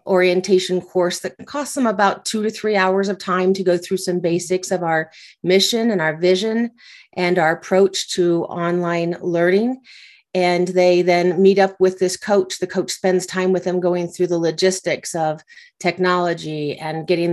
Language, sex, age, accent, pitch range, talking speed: English, female, 40-59, American, 175-195 Hz, 175 wpm